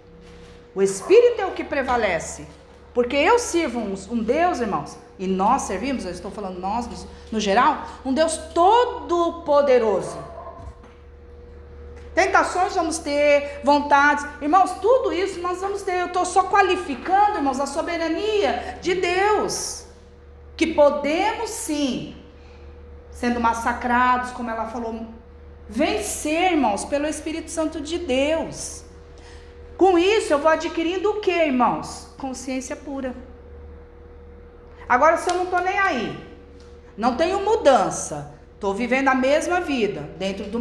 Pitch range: 230-360 Hz